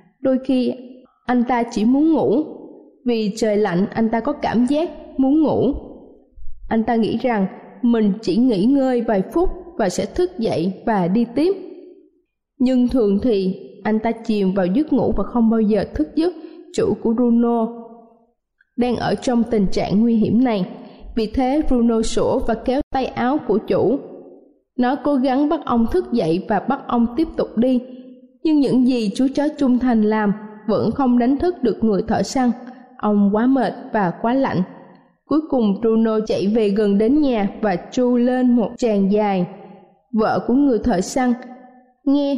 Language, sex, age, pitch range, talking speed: Vietnamese, female, 20-39, 215-265 Hz, 175 wpm